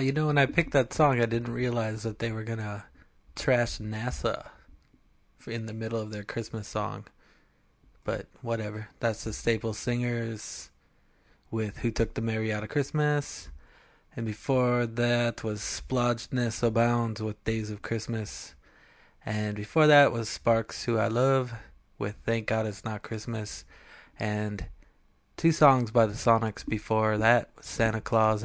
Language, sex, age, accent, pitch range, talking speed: English, male, 20-39, American, 105-120 Hz, 150 wpm